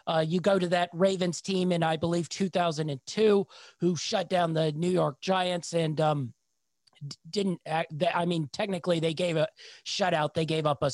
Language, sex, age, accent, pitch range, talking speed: English, male, 30-49, American, 155-190 Hz, 190 wpm